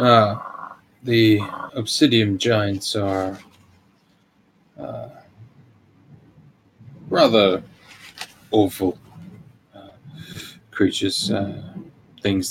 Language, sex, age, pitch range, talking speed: English, male, 20-39, 95-115 Hz, 60 wpm